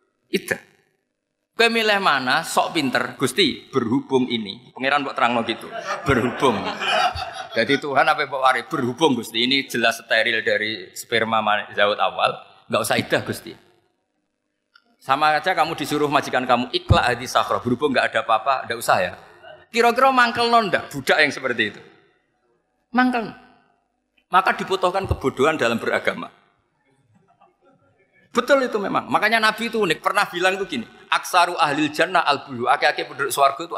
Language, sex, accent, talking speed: Indonesian, male, native, 140 wpm